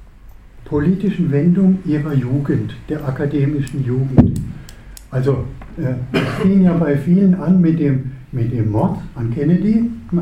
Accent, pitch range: German, 125-175 Hz